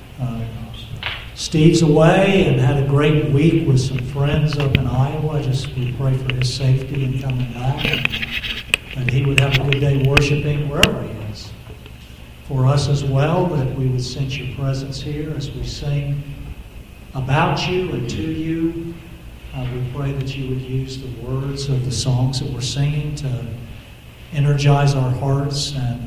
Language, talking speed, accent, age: English, 170 wpm, American, 50-69